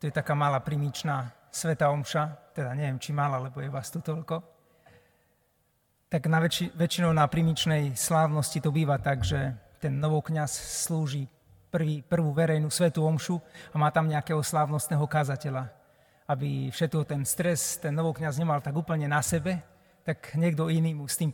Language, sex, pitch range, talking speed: Slovak, male, 140-165 Hz, 165 wpm